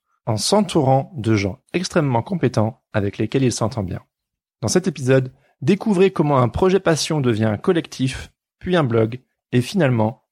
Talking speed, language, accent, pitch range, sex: 155 wpm, French, French, 110-145 Hz, male